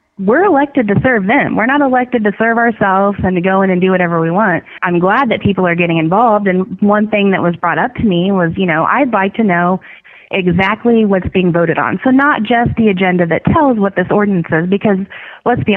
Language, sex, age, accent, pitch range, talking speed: English, female, 20-39, American, 175-215 Hz, 235 wpm